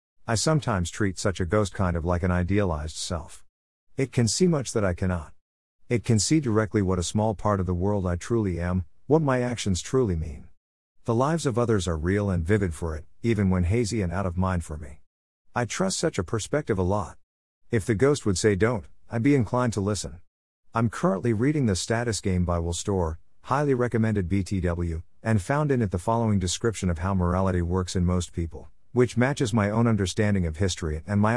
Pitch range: 90-115 Hz